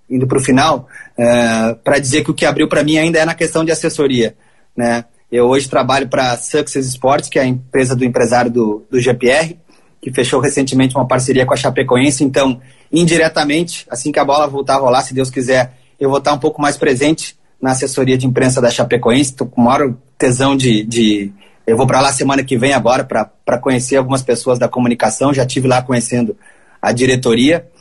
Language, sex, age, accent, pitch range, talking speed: Portuguese, male, 30-49, Brazilian, 130-150 Hz, 205 wpm